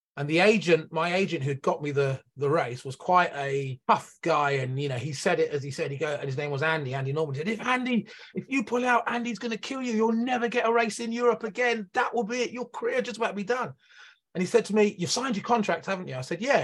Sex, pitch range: male, 145-215 Hz